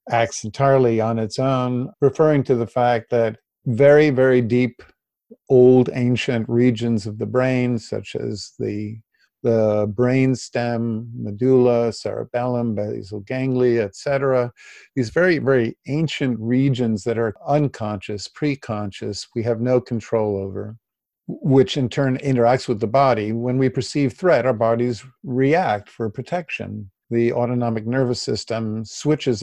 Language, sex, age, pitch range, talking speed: English, male, 50-69, 115-130 Hz, 135 wpm